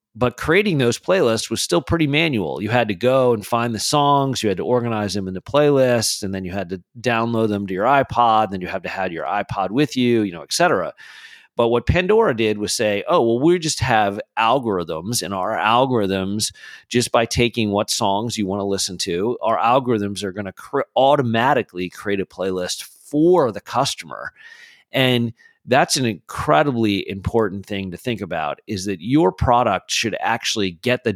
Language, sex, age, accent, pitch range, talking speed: English, male, 40-59, American, 95-125 Hz, 195 wpm